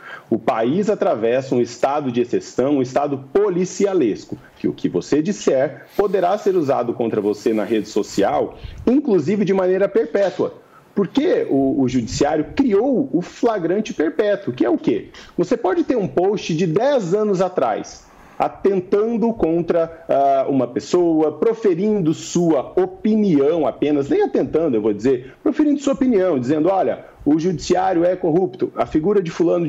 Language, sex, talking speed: Portuguese, male, 150 wpm